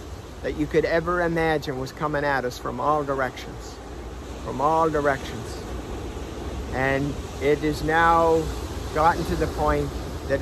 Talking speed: 140 wpm